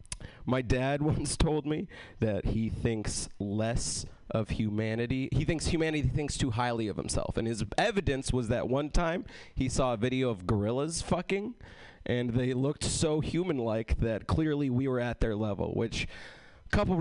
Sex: male